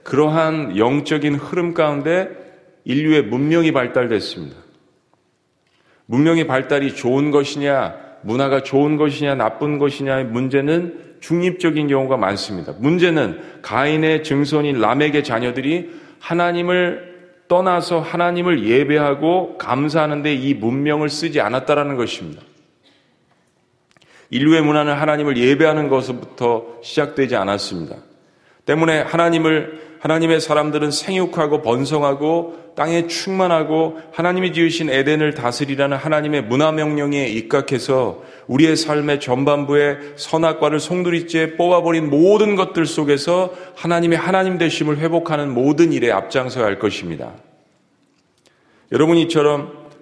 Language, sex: Korean, male